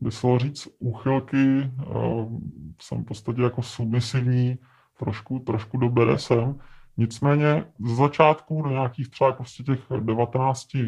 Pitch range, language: 110-130 Hz, Czech